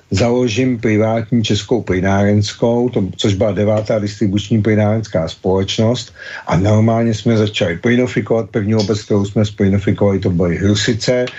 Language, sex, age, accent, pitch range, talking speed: Czech, male, 50-69, native, 105-120 Hz, 125 wpm